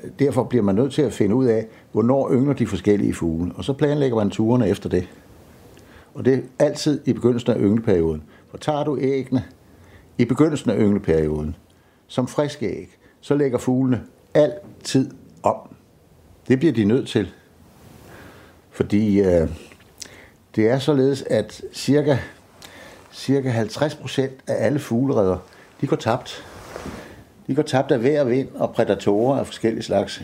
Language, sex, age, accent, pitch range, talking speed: Danish, male, 60-79, native, 100-135 Hz, 150 wpm